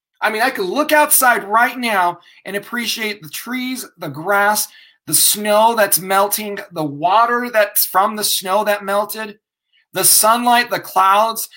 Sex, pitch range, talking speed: male, 185-245 Hz, 155 wpm